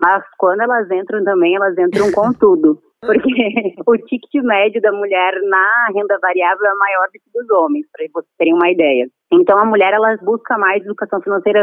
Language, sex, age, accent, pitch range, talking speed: Portuguese, female, 20-39, Brazilian, 190-245 Hz, 190 wpm